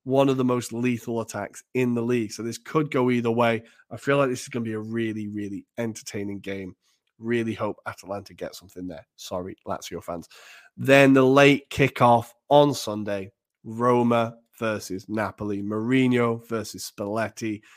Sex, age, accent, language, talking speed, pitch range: male, 30-49, British, English, 165 wpm, 110-130 Hz